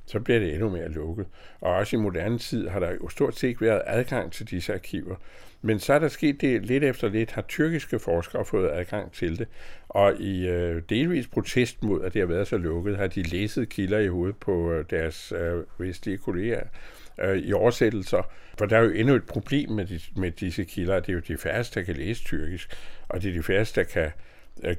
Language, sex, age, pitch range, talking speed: Danish, male, 60-79, 85-115 Hz, 225 wpm